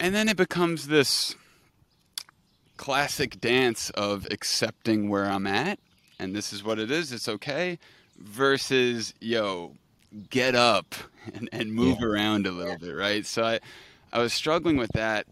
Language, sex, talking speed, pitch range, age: English, male, 155 wpm, 105-125 Hz, 30-49